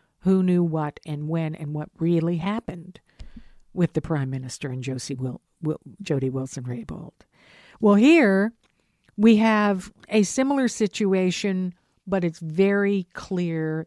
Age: 50-69